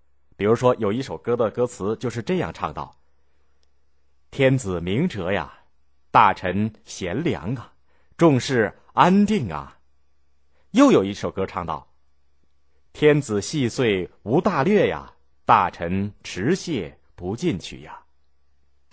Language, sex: Chinese, male